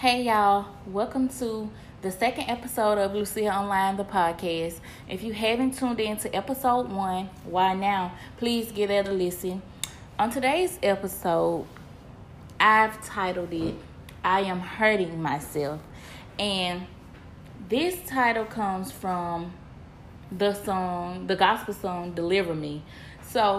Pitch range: 175-220 Hz